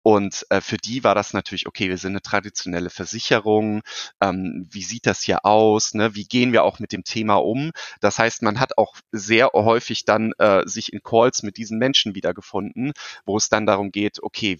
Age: 30-49